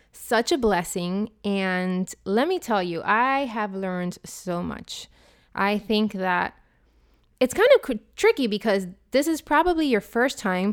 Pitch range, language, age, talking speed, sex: 190-245 Hz, English, 20-39, 155 wpm, female